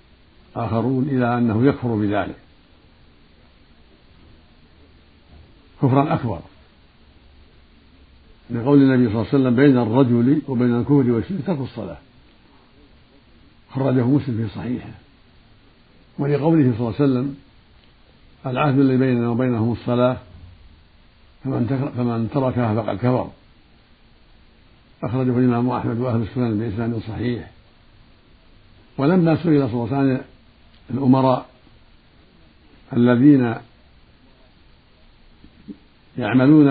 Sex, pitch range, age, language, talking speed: male, 105-135 Hz, 60-79, Arabic, 90 wpm